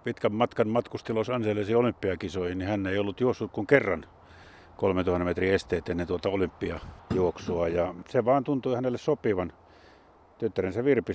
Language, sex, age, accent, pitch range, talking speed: Finnish, male, 50-69, native, 90-115 Hz, 140 wpm